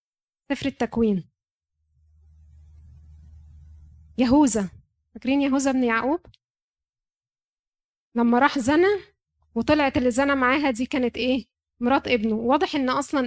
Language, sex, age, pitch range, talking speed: Arabic, female, 20-39, 235-280 Hz, 100 wpm